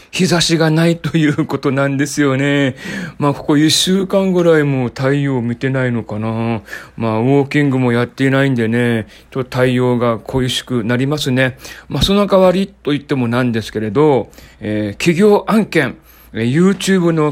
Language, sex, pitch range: Japanese, male, 130-170 Hz